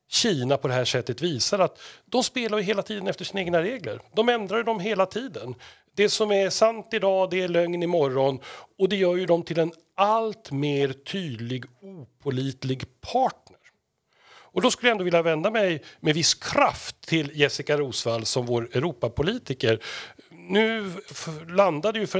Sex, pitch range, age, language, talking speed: male, 125-175 Hz, 40-59, Swedish, 175 wpm